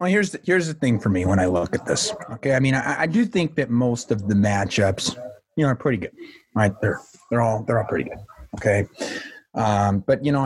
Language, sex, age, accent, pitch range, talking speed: English, male, 30-49, American, 120-145 Hz, 245 wpm